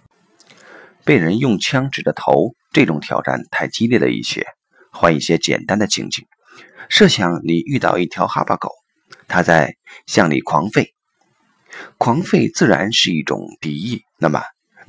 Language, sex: Chinese, male